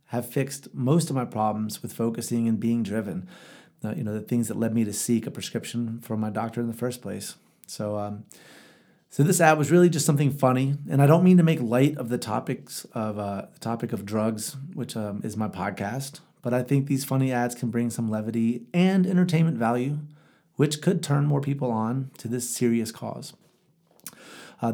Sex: male